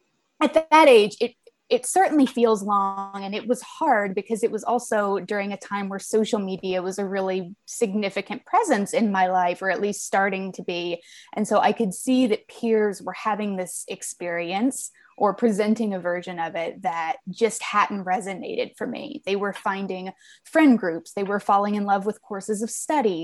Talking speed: 190 wpm